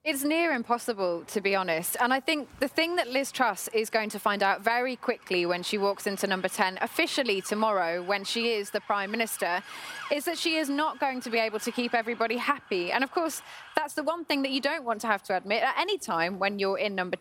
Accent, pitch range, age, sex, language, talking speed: British, 210-280 Hz, 20-39, female, English, 245 wpm